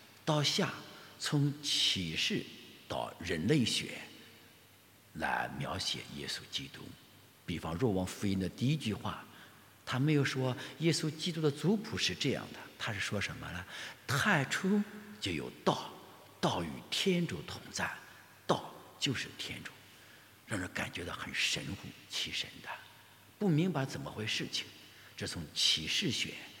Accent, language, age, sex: Chinese, English, 60-79, male